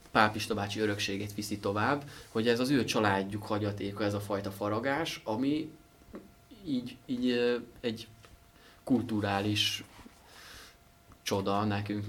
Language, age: Hungarian, 20-39